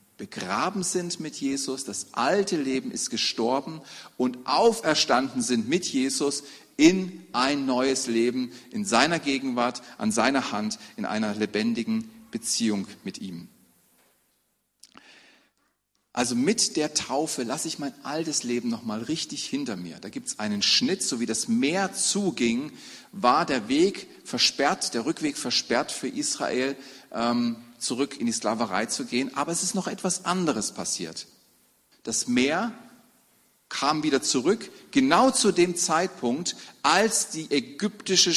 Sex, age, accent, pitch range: male, 40-59, German, 125-215 Hz